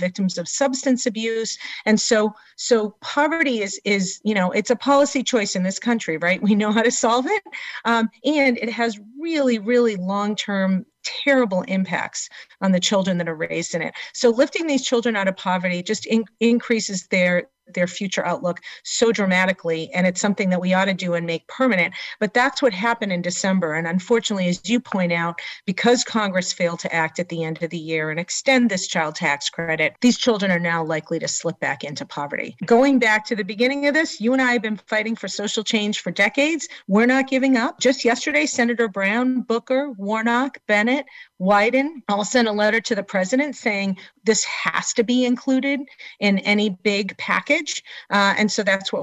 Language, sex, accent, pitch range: English, female, American, 185-245 Hz